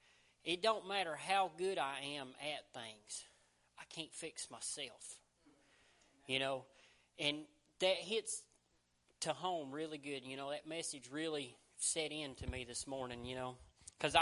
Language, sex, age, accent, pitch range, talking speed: English, male, 40-59, American, 140-195 Hz, 150 wpm